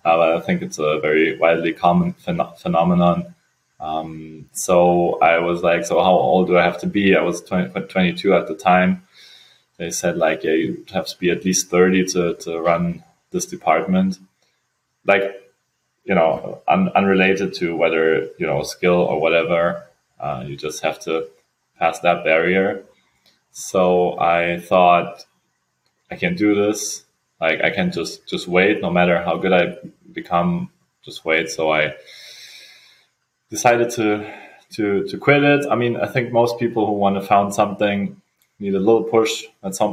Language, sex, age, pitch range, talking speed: English, male, 20-39, 85-100 Hz, 165 wpm